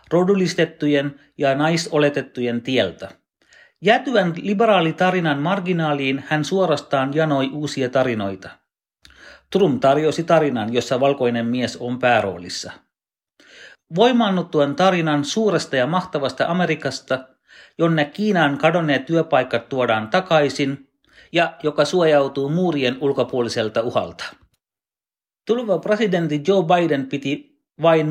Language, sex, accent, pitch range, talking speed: Finnish, male, native, 135-180 Hz, 95 wpm